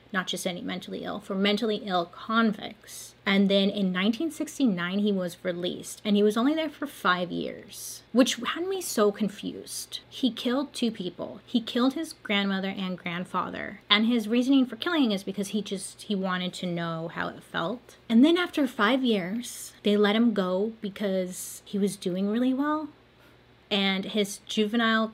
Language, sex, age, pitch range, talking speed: English, female, 30-49, 185-225 Hz, 175 wpm